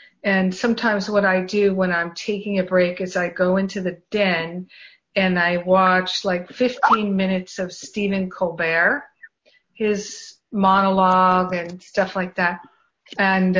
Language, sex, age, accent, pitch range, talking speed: English, female, 50-69, American, 180-205 Hz, 140 wpm